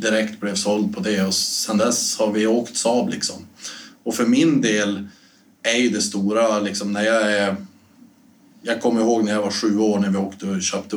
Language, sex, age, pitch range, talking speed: Swedish, male, 20-39, 95-110 Hz, 210 wpm